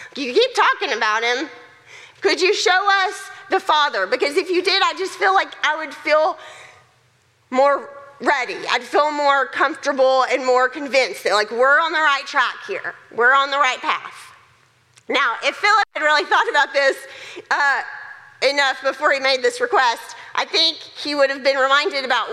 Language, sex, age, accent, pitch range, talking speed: English, female, 40-59, American, 275-400 Hz, 180 wpm